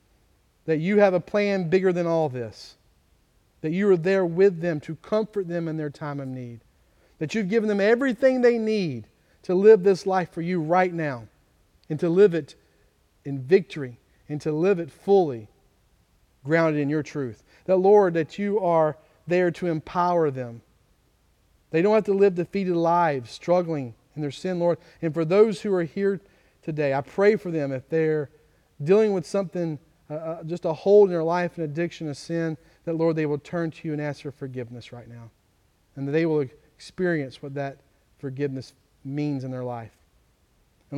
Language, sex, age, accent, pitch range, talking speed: English, male, 40-59, American, 140-175 Hz, 185 wpm